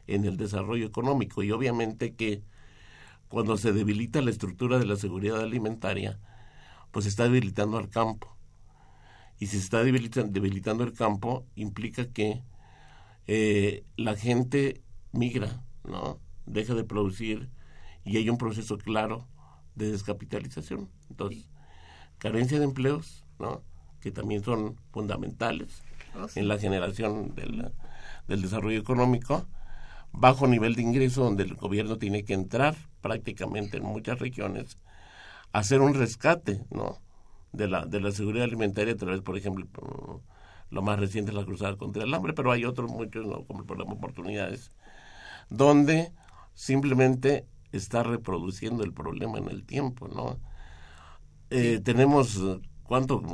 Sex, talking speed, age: male, 140 wpm, 50-69